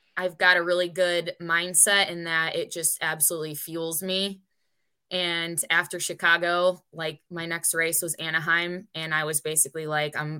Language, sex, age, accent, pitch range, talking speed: English, female, 20-39, American, 160-185 Hz, 160 wpm